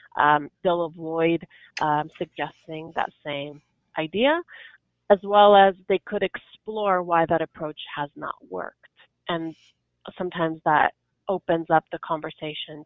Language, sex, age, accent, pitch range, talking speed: English, female, 30-49, American, 160-200 Hz, 125 wpm